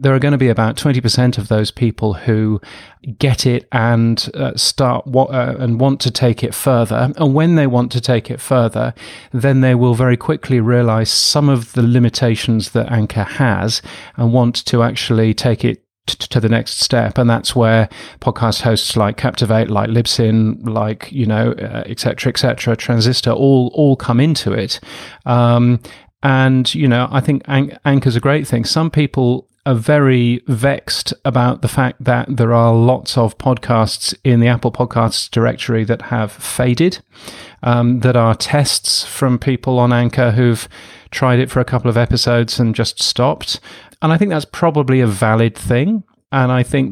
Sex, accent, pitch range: male, British, 115-130 Hz